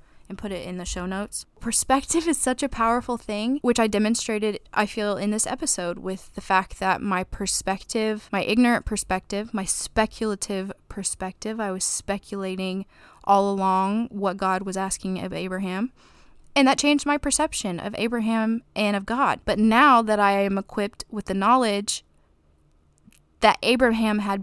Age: 20-39